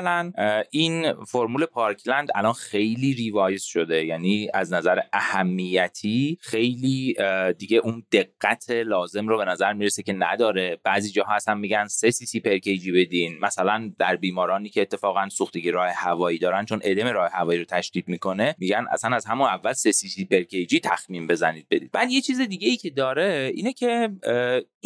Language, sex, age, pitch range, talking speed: Persian, male, 30-49, 100-170 Hz, 160 wpm